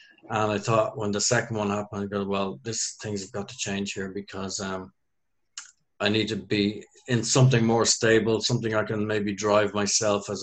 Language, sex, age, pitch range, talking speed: English, male, 50-69, 105-125 Hz, 200 wpm